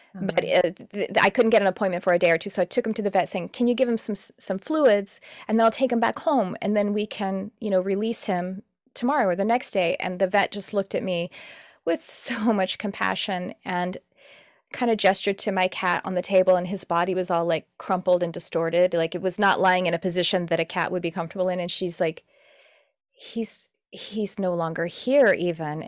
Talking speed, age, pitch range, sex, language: 240 wpm, 30-49, 175-205 Hz, female, English